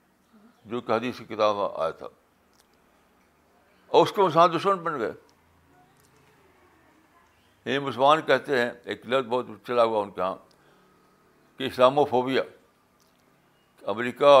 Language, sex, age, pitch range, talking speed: Urdu, male, 60-79, 115-150 Hz, 125 wpm